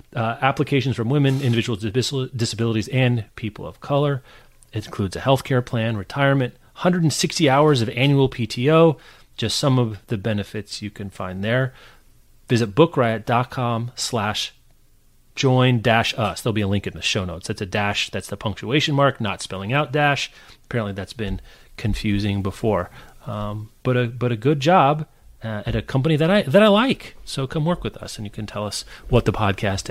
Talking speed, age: 175 wpm, 30-49